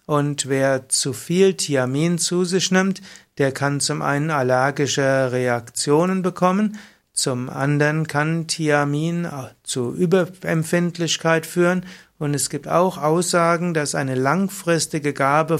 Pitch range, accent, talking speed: 135-170 Hz, German, 120 wpm